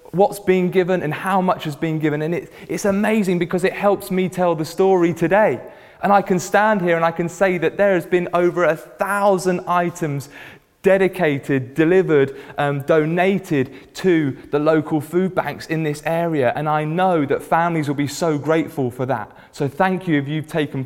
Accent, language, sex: British, English, male